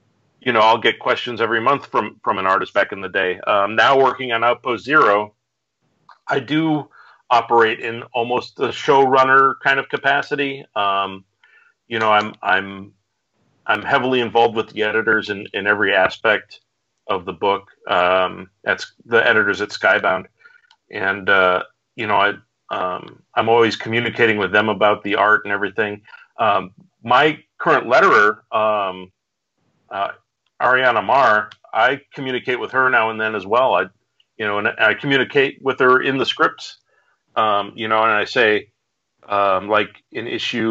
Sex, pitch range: male, 100-130 Hz